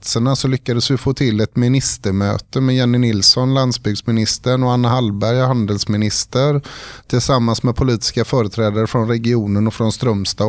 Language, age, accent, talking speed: Swedish, 30-49, native, 135 wpm